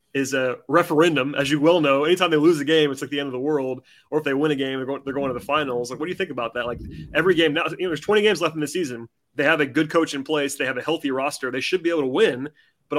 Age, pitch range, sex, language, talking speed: 30-49, 135-175 Hz, male, English, 330 wpm